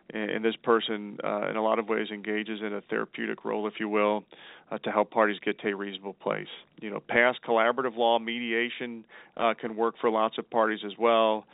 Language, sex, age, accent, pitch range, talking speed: English, male, 40-59, American, 105-120 Hz, 215 wpm